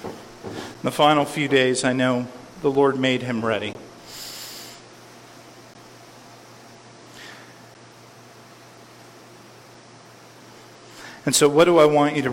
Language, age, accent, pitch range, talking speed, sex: English, 40-59, American, 125-150 Hz, 95 wpm, male